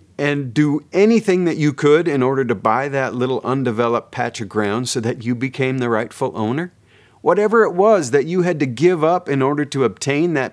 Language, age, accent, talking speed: English, 40-59, American, 210 wpm